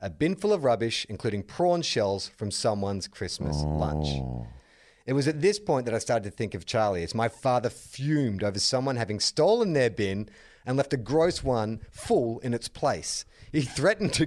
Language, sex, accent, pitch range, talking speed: English, male, Australian, 100-145 Hz, 195 wpm